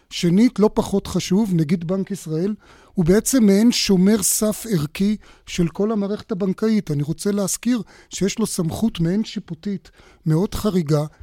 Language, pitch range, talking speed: Hebrew, 165-195 Hz, 145 wpm